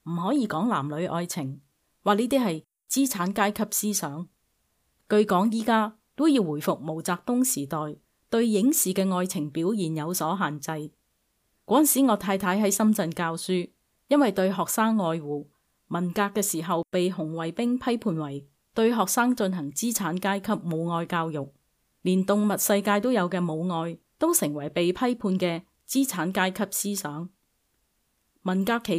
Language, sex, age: Chinese, female, 30-49